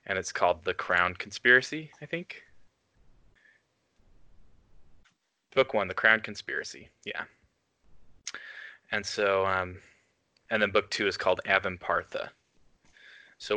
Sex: male